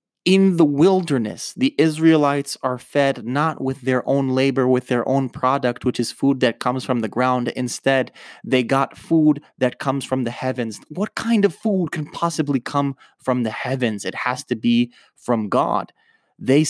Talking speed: 180 wpm